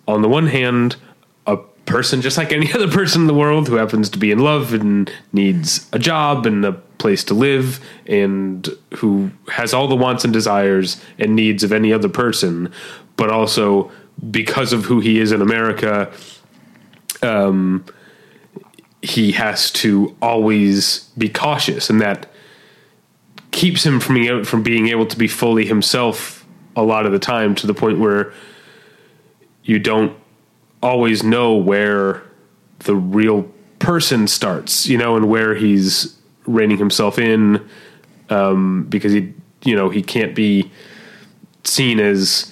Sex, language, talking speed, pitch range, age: male, English, 150 wpm, 100-120 Hz, 30-49